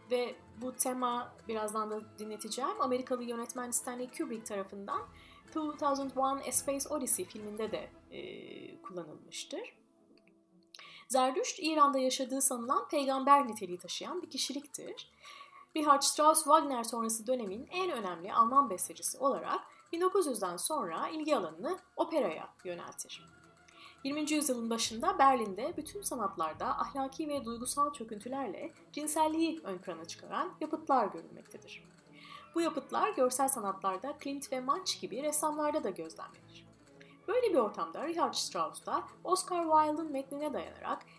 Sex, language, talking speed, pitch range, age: female, Turkish, 120 wpm, 245-315 Hz, 30-49